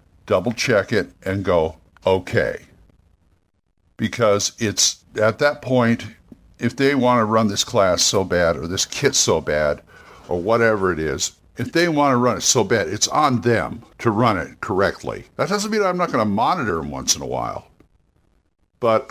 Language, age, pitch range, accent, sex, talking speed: English, 60-79, 95-130 Hz, American, male, 180 wpm